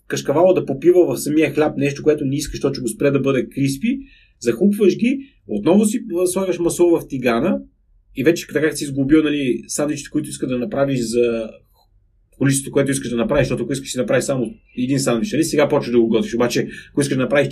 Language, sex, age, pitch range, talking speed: Bulgarian, male, 30-49, 125-195 Hz, 210 wpm